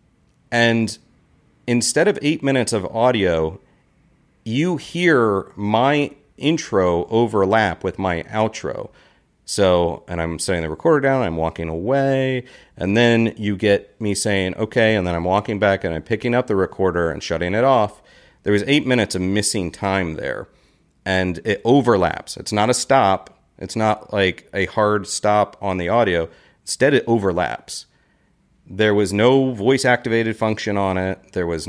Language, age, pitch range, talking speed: English, 40-59, 95-115 Hz, 160 wpm